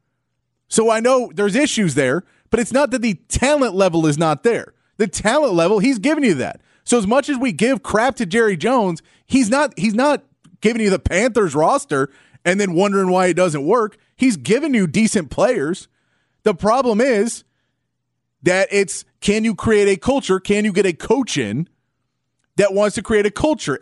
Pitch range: 170-225 Hz